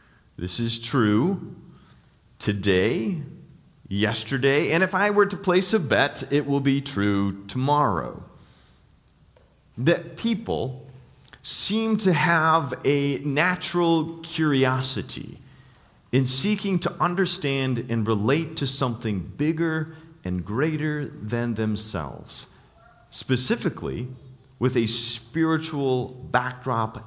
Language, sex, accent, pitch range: English, male, American, 125-170 Hz